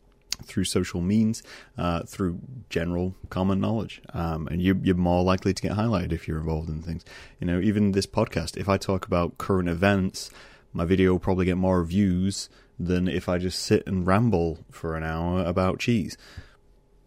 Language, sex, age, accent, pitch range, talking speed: English, male, 30-49, British, 85-115 Hz, 185 wpm